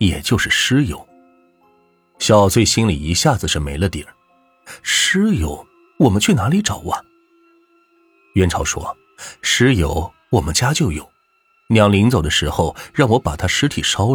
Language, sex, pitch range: Chinese, male, 85-135 Hz